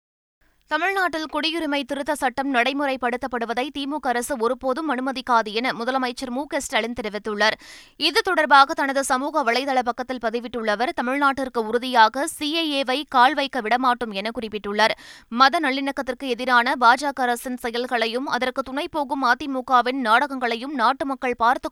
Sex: female